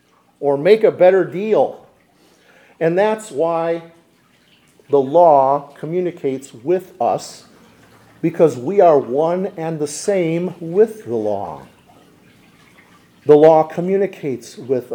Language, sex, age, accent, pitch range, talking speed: English, male, 50-69, American, 150-195 Hz, 110 wpm